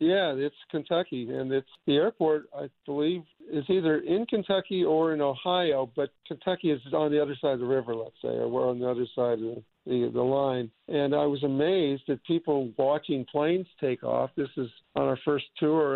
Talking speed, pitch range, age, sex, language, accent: 205 wpm, 130-155 Hz, 50-69, male, English, American